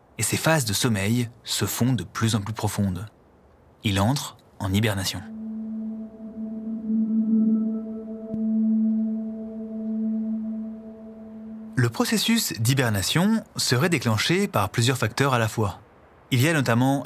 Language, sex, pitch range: French, male, 110-185 Hz